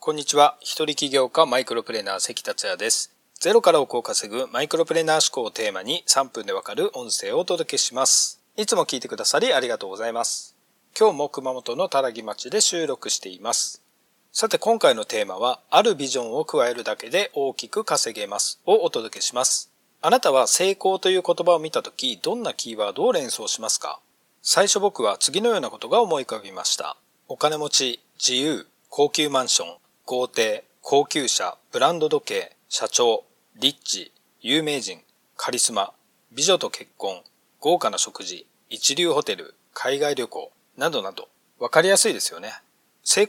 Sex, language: male, Japanese